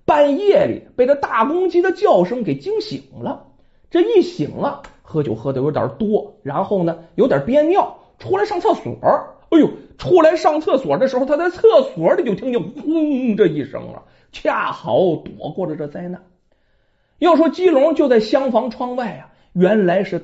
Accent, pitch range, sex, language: native, 190-315 Hz, male, Chinese